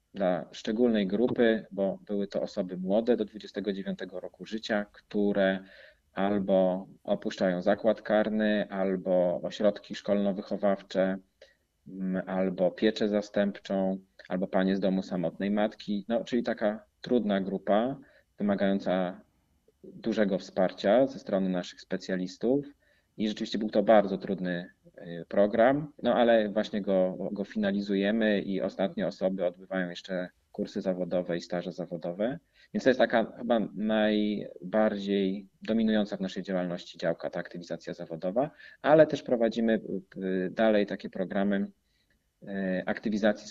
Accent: native